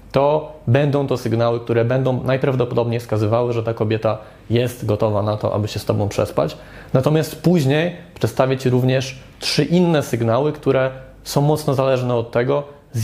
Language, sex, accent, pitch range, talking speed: Polish, male, native, 115-135 Hz, 160 wpm